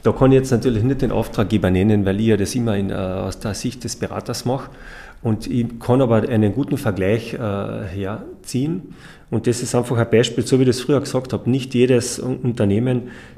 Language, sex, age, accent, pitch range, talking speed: German, male, 40-59, German, 100-130 Hz, 205 wpm